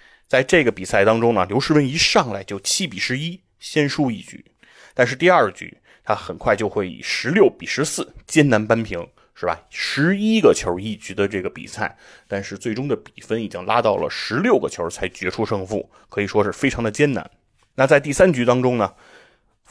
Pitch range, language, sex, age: 100-130 Hz, Chinese, male, 20-39